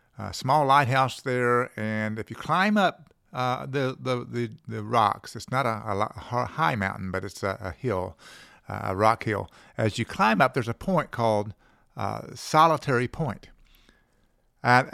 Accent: American